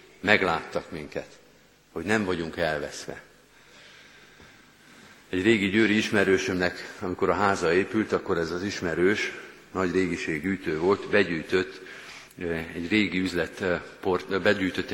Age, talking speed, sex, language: 50-69, 105 wpm, male, Hungarian